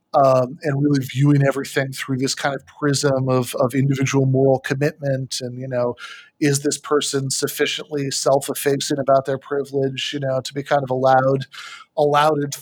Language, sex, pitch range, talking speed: English, male, 130-145 Hz, 165 wpm